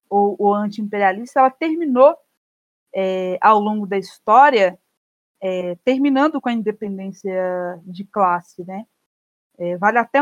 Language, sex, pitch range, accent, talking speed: Portuguese, female, 195-245 Hz, Brazilian, 105 wpm